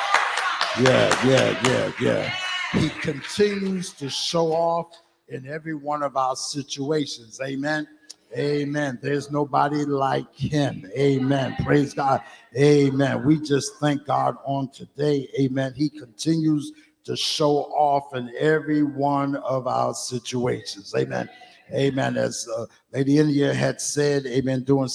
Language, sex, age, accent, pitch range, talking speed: English, male, 60-79, American, 130-155 Hz, 125 wpm